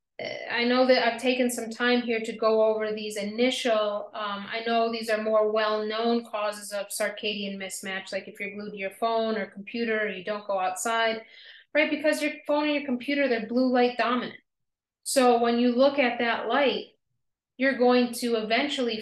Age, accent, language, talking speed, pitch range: 30-49, American, English, 190 wpm, 215-255 Hz